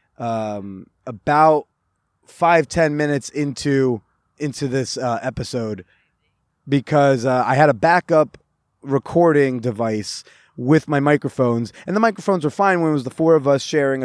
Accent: American